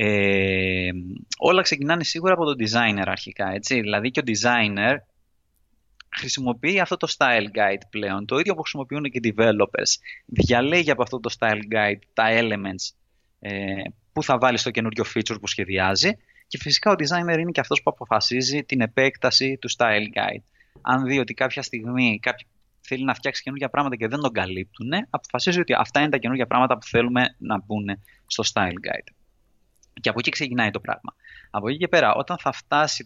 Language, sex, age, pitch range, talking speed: Greek, male, 20-39, 105-145 Hz, 180 wpm